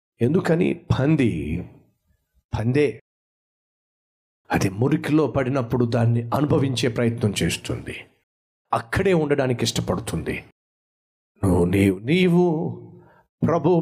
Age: 50-69